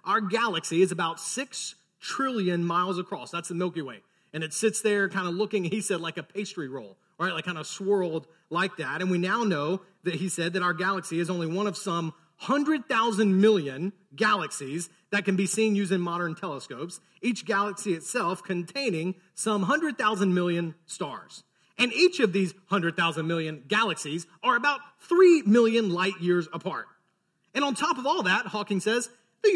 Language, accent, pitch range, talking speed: English, American, 175-225 Hz, 180 wpm